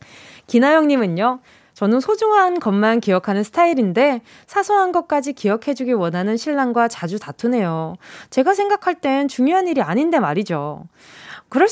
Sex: female